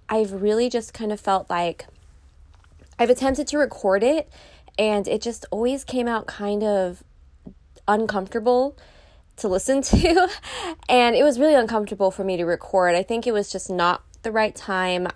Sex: female